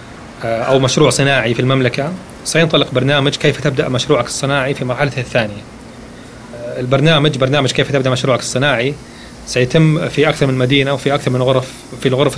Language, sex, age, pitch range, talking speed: Arabic, male, 30-49, 125-145 Hz, 155 wpm